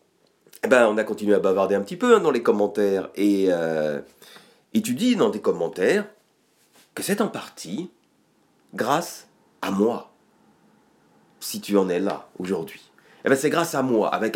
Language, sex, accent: English, male, French